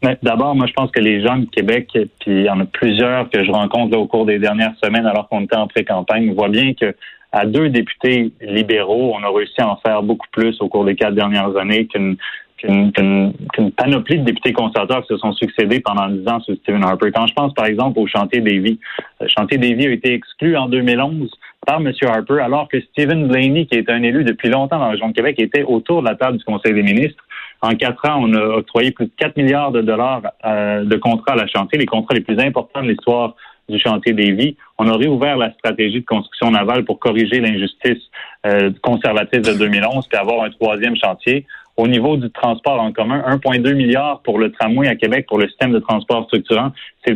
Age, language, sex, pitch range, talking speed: 30-49, French, male, 105-130 Hz, 230 wpm